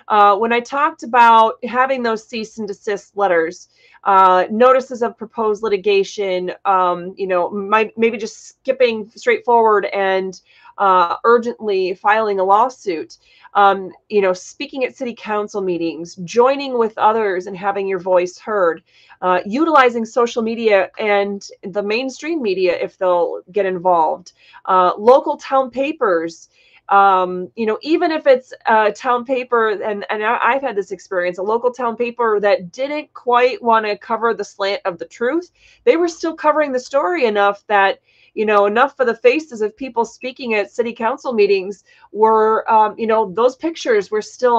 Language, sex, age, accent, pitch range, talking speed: English, female, 30-49, American, 195-250 Hz, 165 wpm